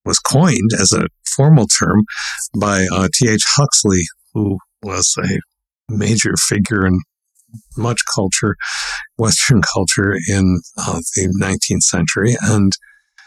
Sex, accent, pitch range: male, American, 95-120 Hz